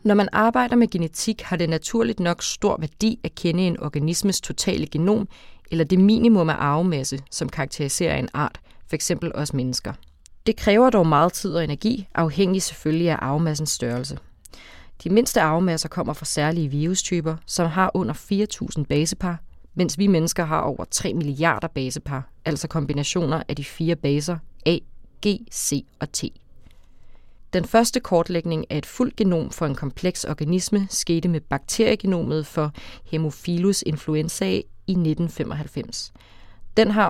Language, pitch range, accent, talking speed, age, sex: Danish, 150-190 Hz, native, 150 wpm, 30-49, female